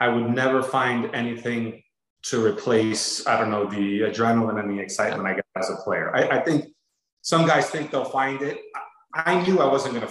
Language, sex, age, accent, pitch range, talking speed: English, male, 30-49, American, 115-150 Hz, 215 wpm